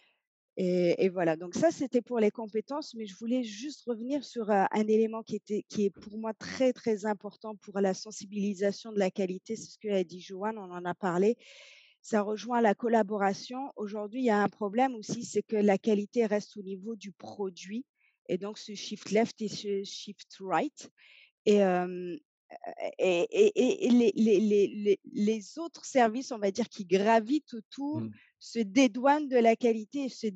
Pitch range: 205-250 Hz